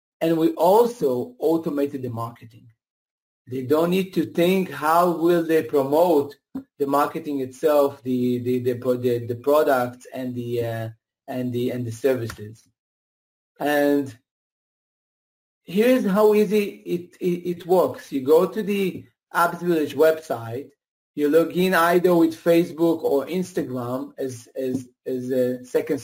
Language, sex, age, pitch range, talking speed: English, male, 40-59, 140-180 Hz, 135 wpm